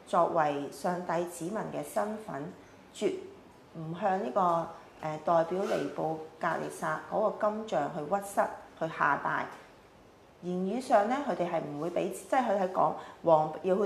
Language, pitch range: Chinese, 155-210 Hz